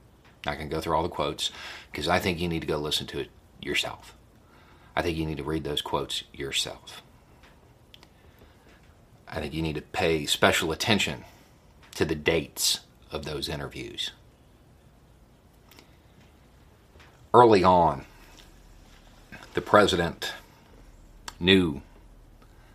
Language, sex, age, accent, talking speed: English, male, 40-59, American, 120 wpm